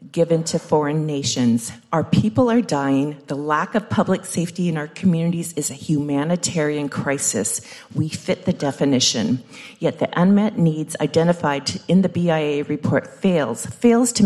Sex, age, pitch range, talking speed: female, 50-69, 150-190 Hz, 150 wpm